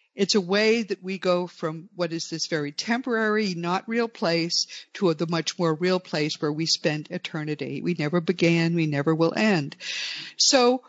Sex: female